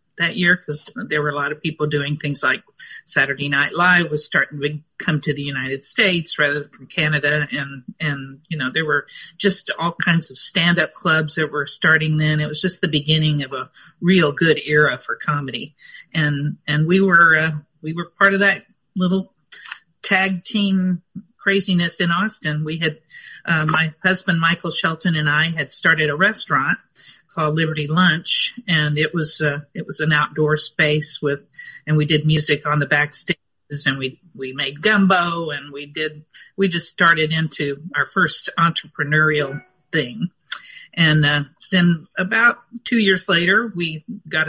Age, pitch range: 50-69, 150-185 Hz